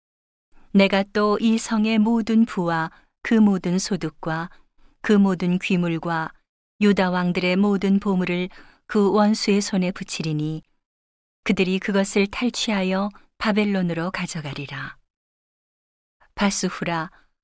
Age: 40-59